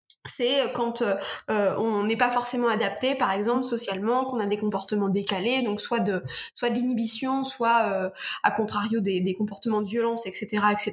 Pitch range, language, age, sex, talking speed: 210-255 Hz, French, 20-39, female, 180 wpm